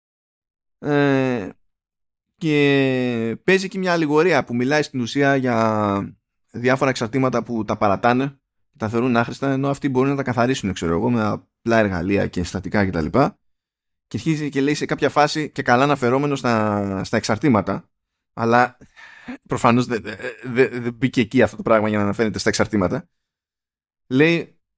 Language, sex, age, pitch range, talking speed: Greek, male, 20-39, 105-150 Hz, 155 wpm